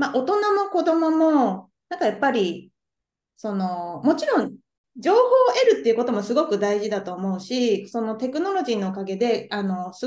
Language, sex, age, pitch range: Japanese, female, 30-49, 200-335 Hz